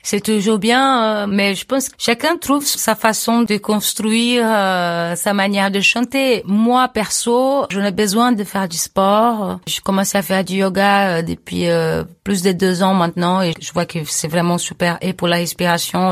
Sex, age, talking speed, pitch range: female, 30-49, 185 wpm, 175-215 Hz